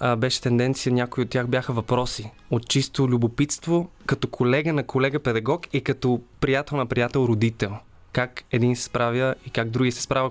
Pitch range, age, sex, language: 115-140 Hz, 20-39, male, Bulgarian